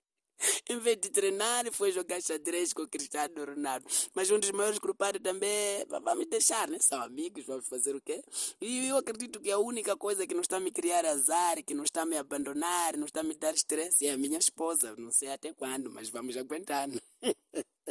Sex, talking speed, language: male, 210 wpm, Portuguese